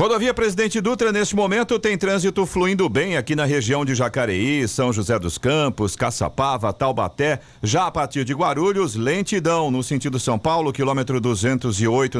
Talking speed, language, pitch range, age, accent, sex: 155 wpm, Portuguese, 125-165 Hz, 50-69, Brazilian, male